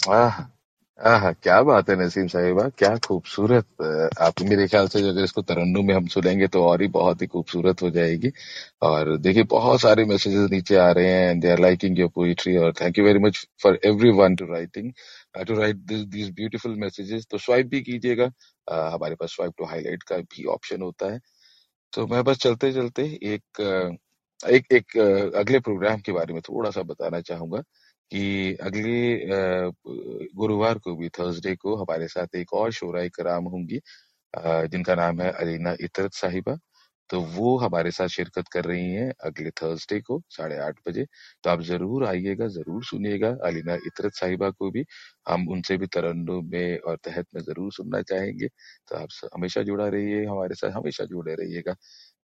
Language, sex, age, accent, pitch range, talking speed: Hindi, male, 40-59, native, 85-105 Hz, 170 wpm